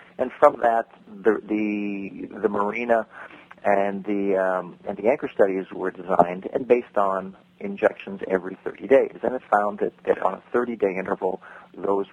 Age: 40-59